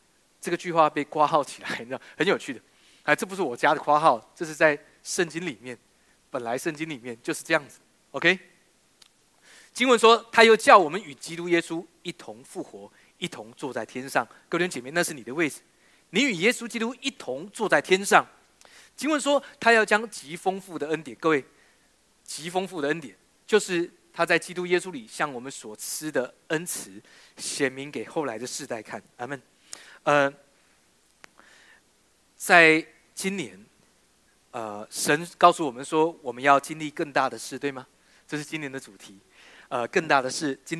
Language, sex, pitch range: Chinese, male, 140-180 Hz